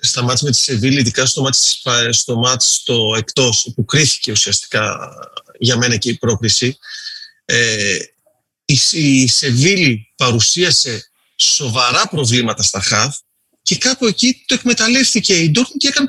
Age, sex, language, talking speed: 30-49, male, Greek, 135 wpm